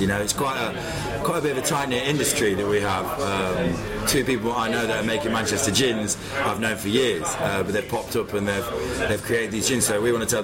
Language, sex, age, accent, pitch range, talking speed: English, male, 20-39, British, 100-120 Hz, 255 wpm